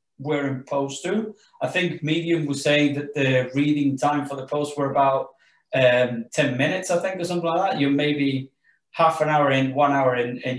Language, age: English, 30-49